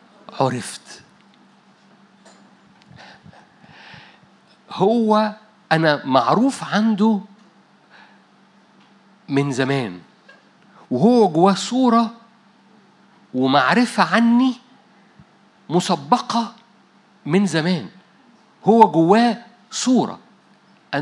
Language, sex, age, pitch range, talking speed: Arabic, male, 50-69, 150-215 Hz, 50 wpm